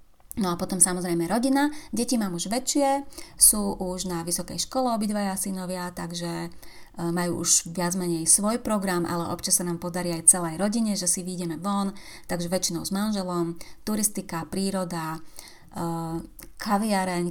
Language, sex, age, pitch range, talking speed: Slovak, female, 30-49, 170-195 Hz, 145 wpm